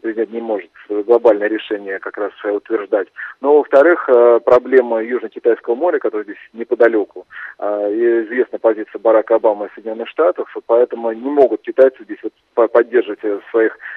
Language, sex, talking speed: Russian, male, 130 wpm